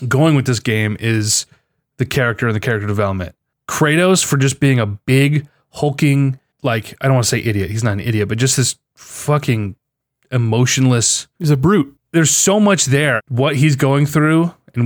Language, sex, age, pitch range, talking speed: English, male, 20-39, 115-140 Hz, 185 wpm